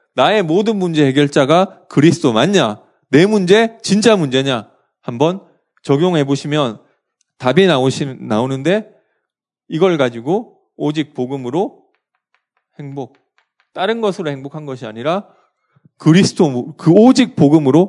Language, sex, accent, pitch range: Korean, male, native, 130-195 Hz